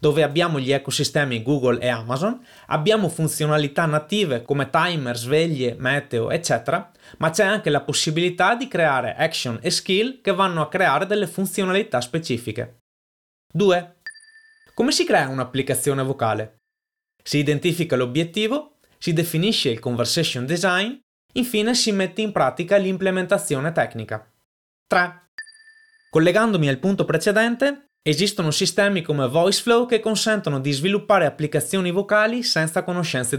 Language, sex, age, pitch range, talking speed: Italian, male, 20-39, 140-200 Hz, 125 wpm